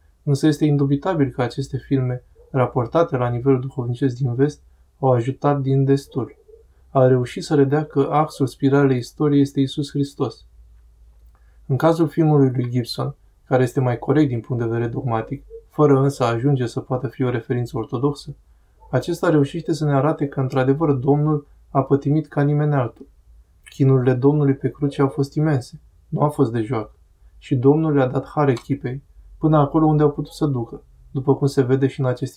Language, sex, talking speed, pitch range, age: Romanian, male, 180 wpm, 120-145 Hz, 20-39